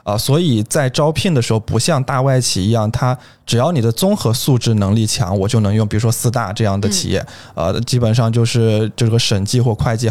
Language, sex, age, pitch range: Chinese, male, 20-39, 105-125 Hz